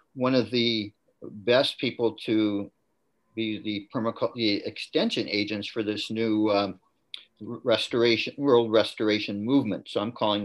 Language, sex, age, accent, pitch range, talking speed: English, male, 50-69, American, 105-140 Hz, 130 wpm